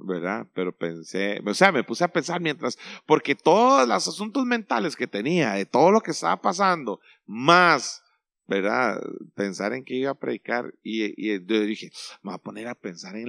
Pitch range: 105-145 Hz